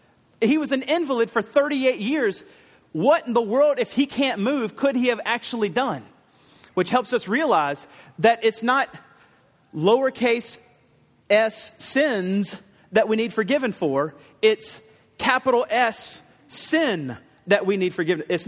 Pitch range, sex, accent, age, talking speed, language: 170-250 Hz, male, American, 40-59, 145 wpm, English